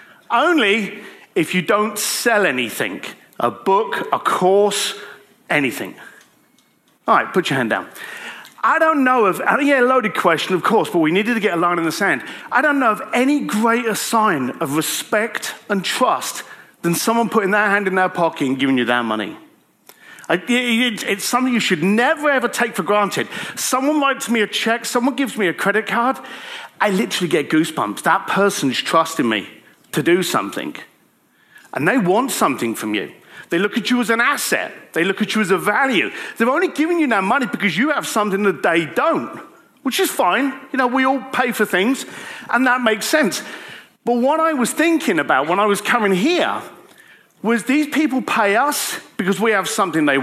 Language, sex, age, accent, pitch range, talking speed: English, male, 40-59, British, 200-275 Hz, 190 wpm